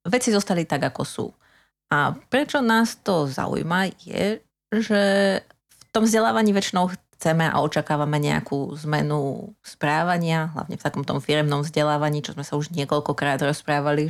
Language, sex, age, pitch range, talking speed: Slovak, female, 30-49, 150-185 Hz, 145 wpm